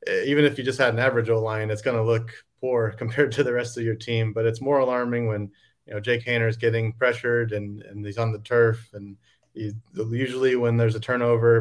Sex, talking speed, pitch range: male, 240 wpm, 110-120 Hz